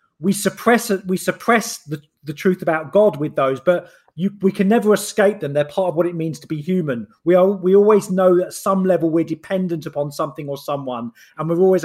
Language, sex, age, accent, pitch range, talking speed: English, male, 30-49, British, 155-190 Hz, 235 wpm